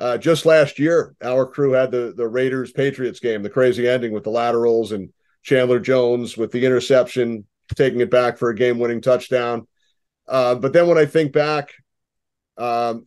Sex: male